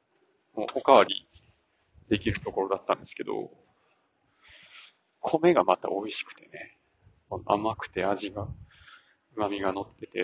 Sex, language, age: male, Japanese, 30-49